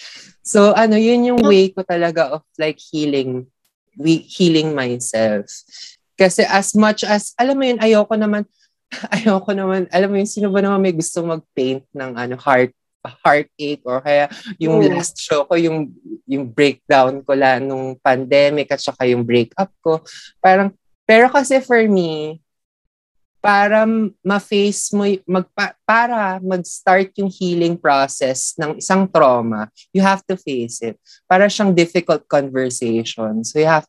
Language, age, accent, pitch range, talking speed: Filipino, 20-39, native, 140-205 Hz, 145 wpm